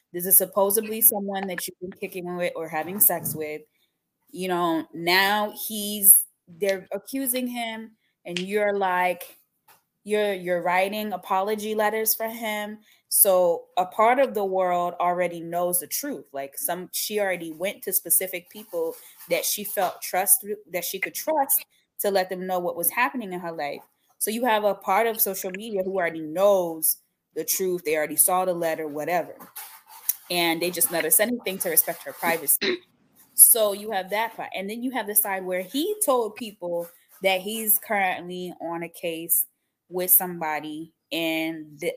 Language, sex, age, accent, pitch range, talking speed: English, female, 20-39, American, 170-210 Hz, 170 wpm